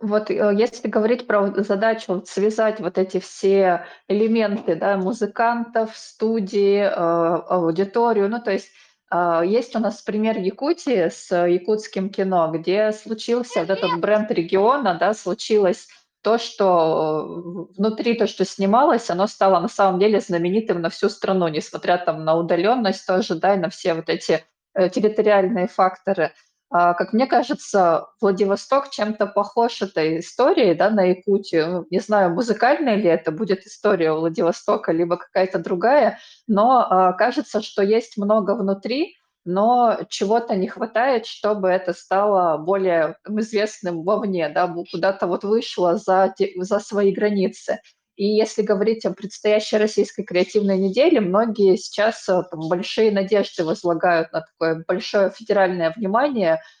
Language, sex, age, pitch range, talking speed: Russian, female, 20-39, 180-215 Hz, 135 wpm